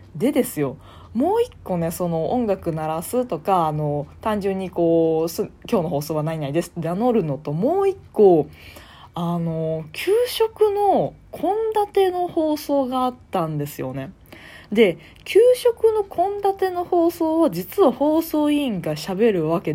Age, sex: 20-39, female